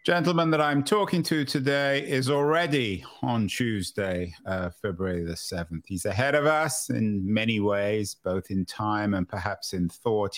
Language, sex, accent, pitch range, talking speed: English, male, British, 105-135 Hz, 160 wpm